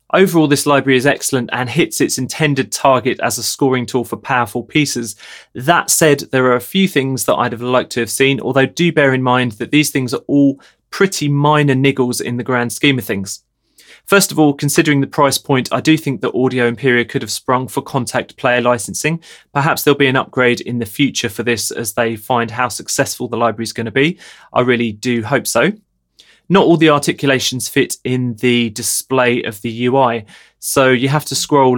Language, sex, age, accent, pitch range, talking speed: English, male, 20-39, British, 115-135 Hz, 210 wpm